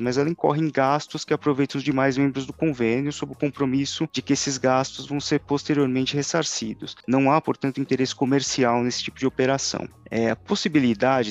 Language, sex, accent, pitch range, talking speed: Portuguese, male, Brazilian, 115-140 Hz, 180 wpm